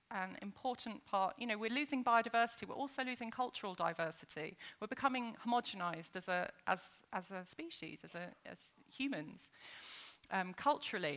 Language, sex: English, female